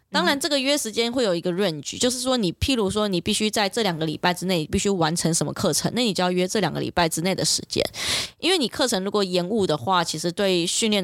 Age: 20-39